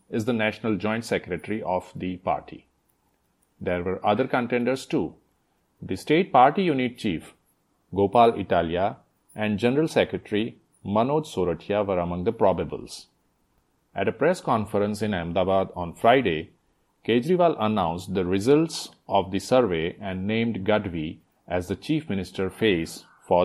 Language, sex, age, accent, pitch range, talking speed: English, male, 40-59, Indian, 95-120 Hz, 135 wpm